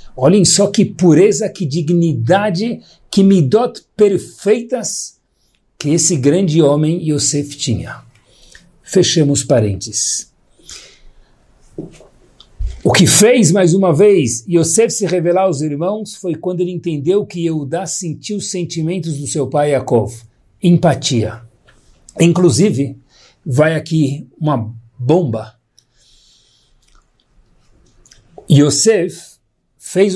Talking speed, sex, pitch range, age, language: 100 wpm, male, 150-200 Hz, 60-79, Portuguese